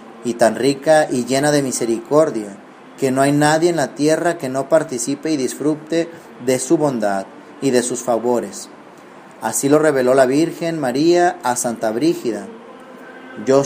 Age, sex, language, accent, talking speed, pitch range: 40-59, male, Danish, Mexican, 160 wpm, 120-160 Hz